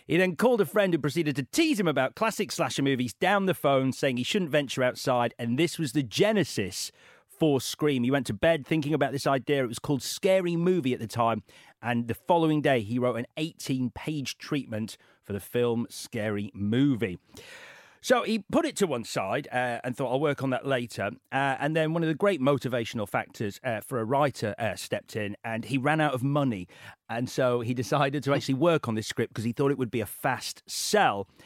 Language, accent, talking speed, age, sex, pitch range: English, British, 220 wpm, 40-59, male, 120-155 Hz